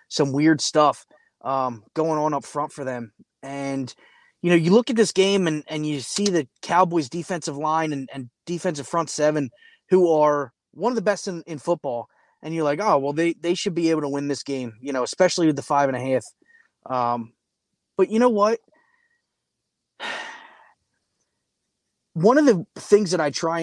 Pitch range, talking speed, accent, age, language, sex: 135-185 Hz, 190 wpm, American, 20-39, English, male